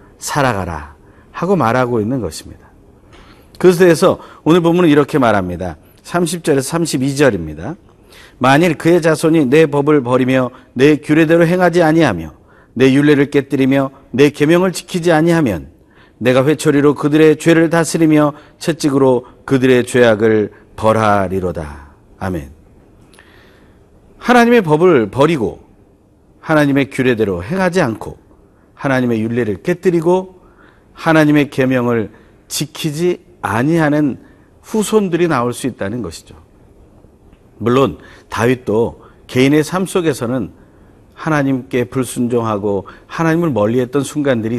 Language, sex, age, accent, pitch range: Korean, male, 40-59, native, 105-155 Hz